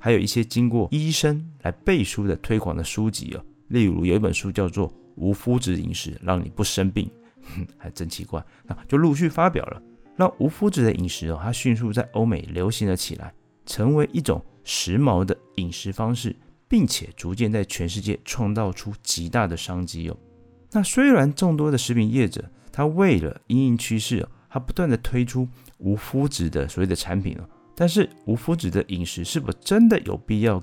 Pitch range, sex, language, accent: 90-125 Hz, male, Chinese, native